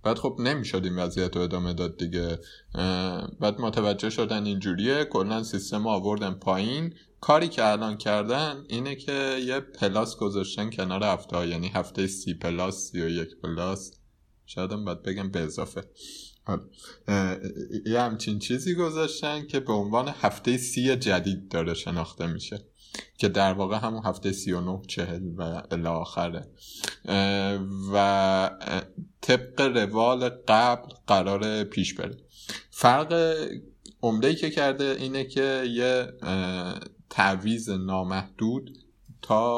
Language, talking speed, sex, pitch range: Persian, 125 wpm, male, 90-115 Hz